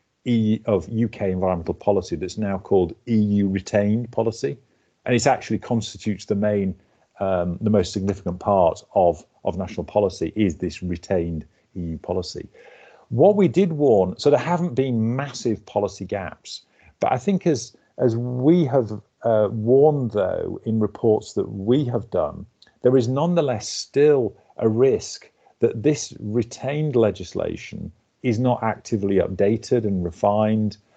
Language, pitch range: English, 95-120 Hz